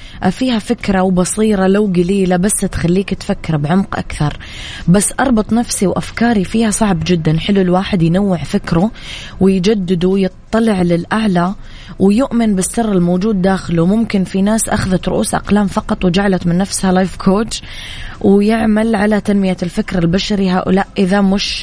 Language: Arabic